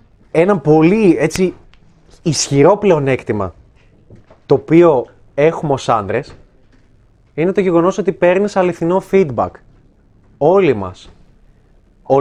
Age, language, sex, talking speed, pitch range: 20-39, Greek, male, 100 wpm, 135-210 Hz